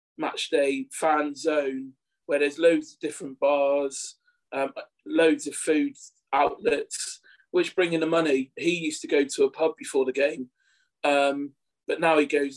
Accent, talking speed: British, 165 wpm